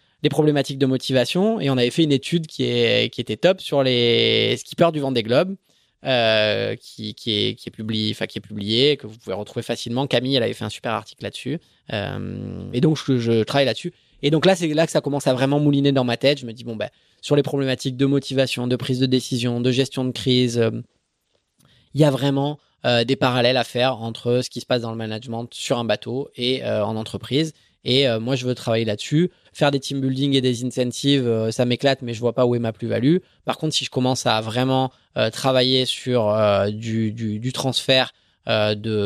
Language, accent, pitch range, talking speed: French, French, 110-135 Hz, 235 wpm